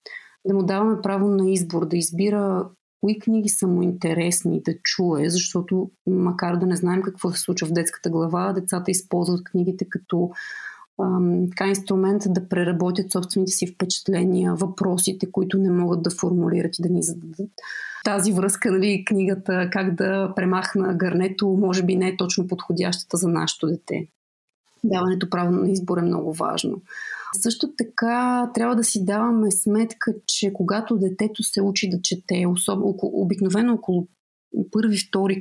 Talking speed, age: 150 wpm, 30-49